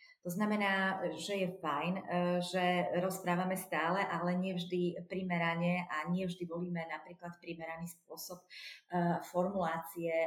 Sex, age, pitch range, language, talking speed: female, 40-59, 165-195 Hz, Slovak, 115 wpm